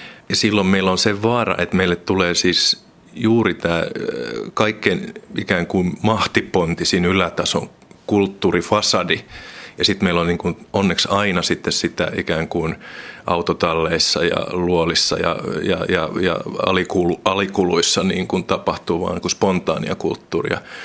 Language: Finnish